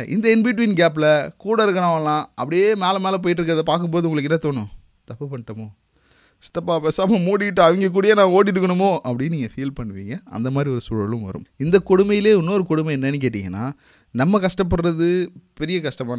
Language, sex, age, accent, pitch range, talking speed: Tamil, male, 30-49, native, 120-170 Hz, 160 wpm